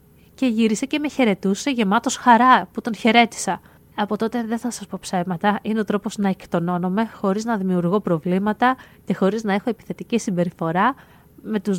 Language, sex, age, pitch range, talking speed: Greek, female, 20-39, 195-240 Hz, 175 wpm